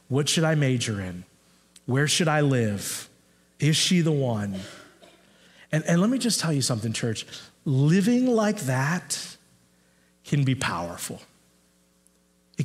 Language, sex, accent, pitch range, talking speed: English, male, American, 125-180 Hz, 140 wpm